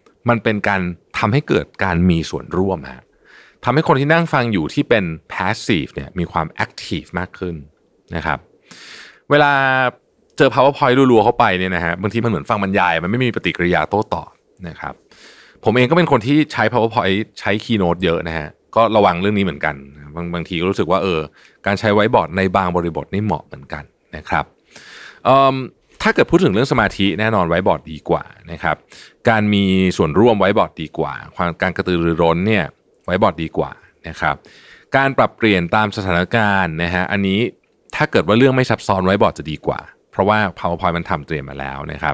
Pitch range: 85-115 Hz